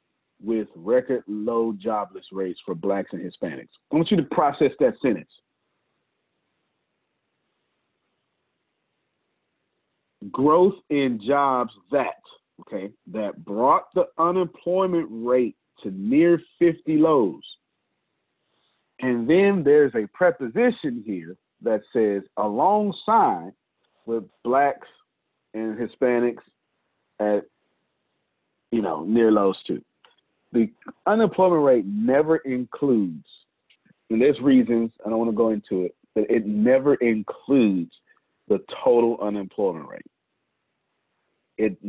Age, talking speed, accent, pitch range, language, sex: 40-59, 105 wpm, American, 105-165 Hz, English, male